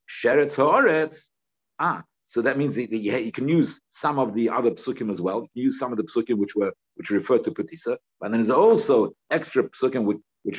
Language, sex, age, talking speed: English, male, 50-69, 200 wpm